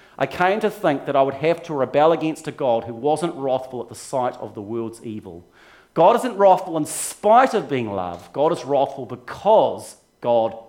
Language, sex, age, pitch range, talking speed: English, male, 40-59, 140-215 Hz, 200 wpm